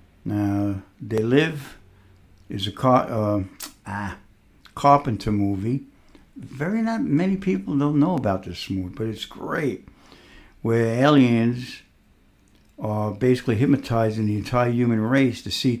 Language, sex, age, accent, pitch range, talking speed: English, male, 60-79, American, 100-125 Hz, 125 wpm